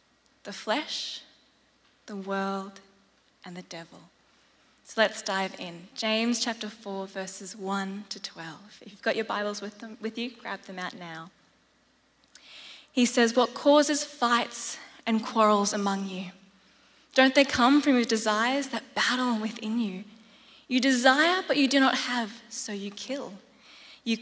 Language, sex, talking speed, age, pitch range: English, female, 150 wpm, 20-39, 205-255 Hz